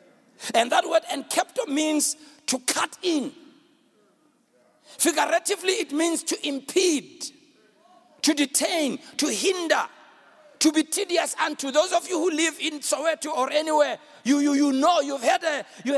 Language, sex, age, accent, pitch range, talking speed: English, male, 60-79, South African, 295-340 Hz, 145 wpm